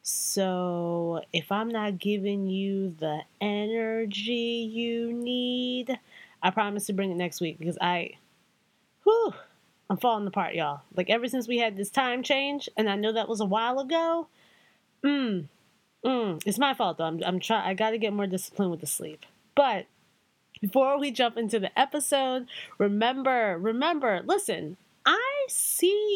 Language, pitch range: English, 200-270 Hz